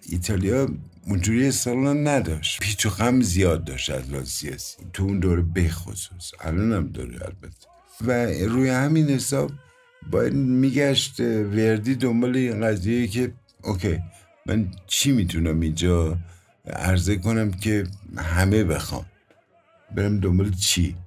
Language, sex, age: Persian, male, 60-79